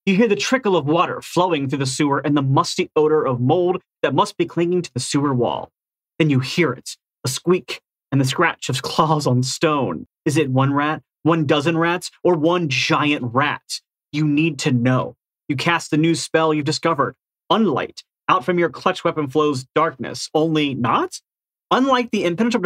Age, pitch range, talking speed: 30-49, 140-180 Hz, 190 wpm